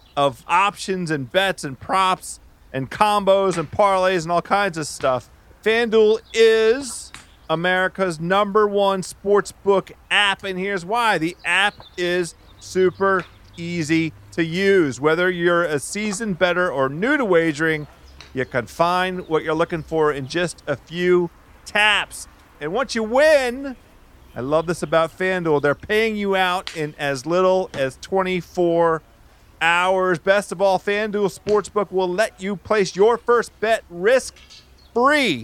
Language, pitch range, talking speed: English, 160-220 Hz, 140 wpm